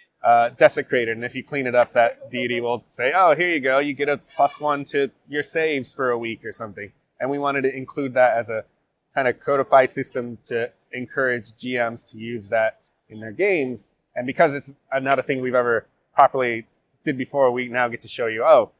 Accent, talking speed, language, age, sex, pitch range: American, 215 wpm, English, 20-39, male, 115-135 Hz